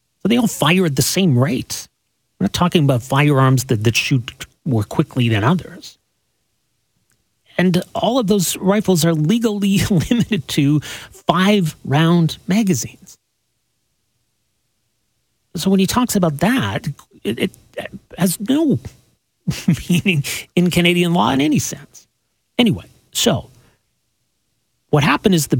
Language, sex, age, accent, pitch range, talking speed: English, male, 40-59, American, 120-190 Hz, 125 wpm